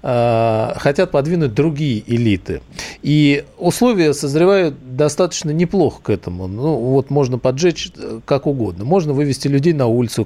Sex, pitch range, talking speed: male, 110-150 Hz, 130 wpm